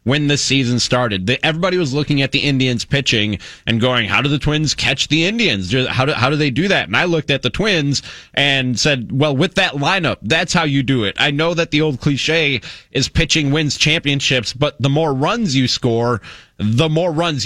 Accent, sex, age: American, male, 30-49